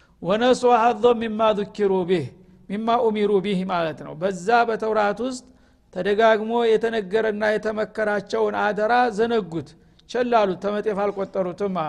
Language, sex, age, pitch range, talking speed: Amharic, male, 50-69, 190-225 Hz, 95 wpm